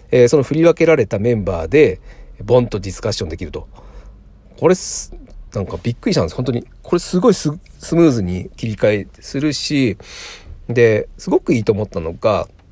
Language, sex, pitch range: Japanese, male, 100-165 Hz